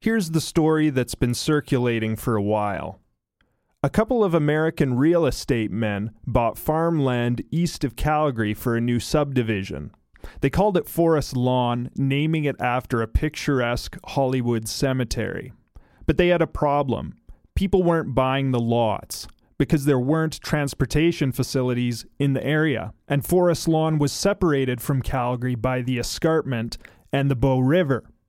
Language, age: English, 30-49